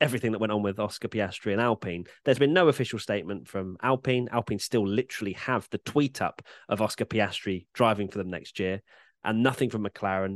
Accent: British